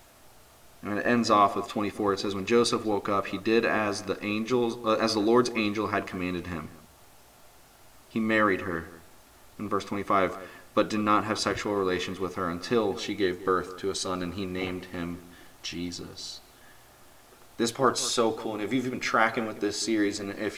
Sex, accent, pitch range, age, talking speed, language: male, American, 100-120 Hz, 30-49, 190 wpm, English